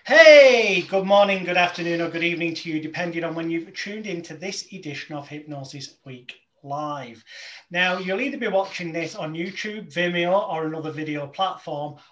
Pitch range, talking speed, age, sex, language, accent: 165-210 Hz, 175 wpm, 30-49, male, English, British